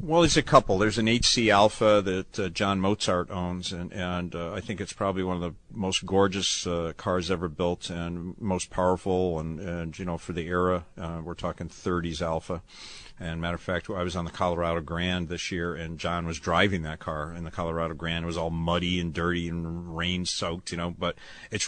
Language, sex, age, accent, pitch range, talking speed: English, male, 50-69, American, 85-100 Hz, 220 wpm